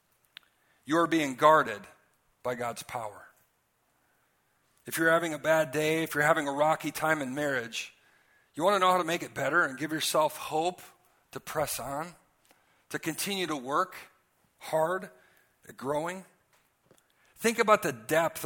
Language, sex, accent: English, male, American